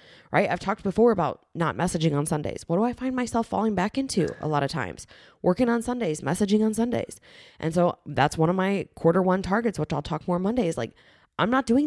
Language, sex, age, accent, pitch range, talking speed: English, female, 20-39, American, 145-185 Hz, 225 wpm